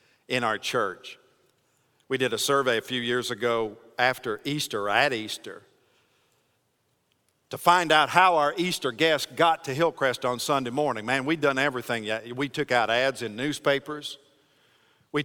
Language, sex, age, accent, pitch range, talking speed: English, male, 50-69, American, 145-200 Hz, 155 wpm